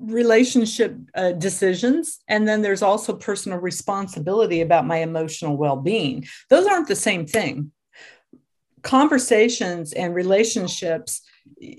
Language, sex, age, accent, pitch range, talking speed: English, female, 50-69, American, 170-225 Hz, 110 wpm